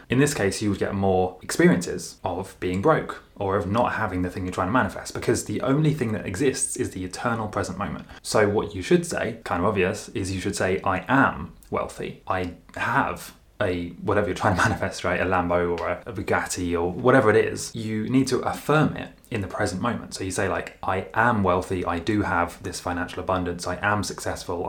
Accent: British